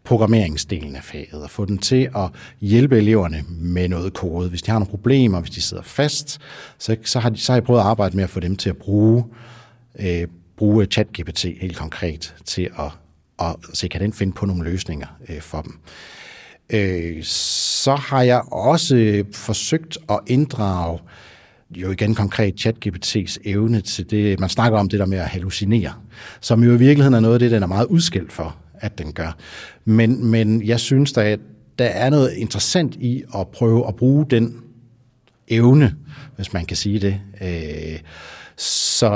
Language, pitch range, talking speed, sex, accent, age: English, 90-115 Hz, 180 wpm, male, Danish, 60-79